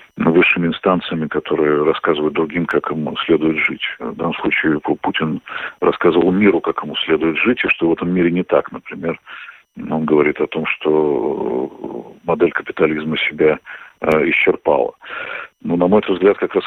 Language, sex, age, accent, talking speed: Russian, male, 50-69, native, 155 wpm